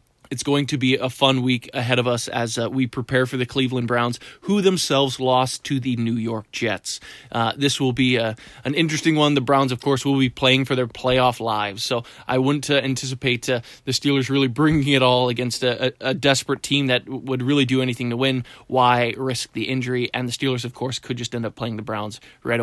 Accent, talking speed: American, 230 wpm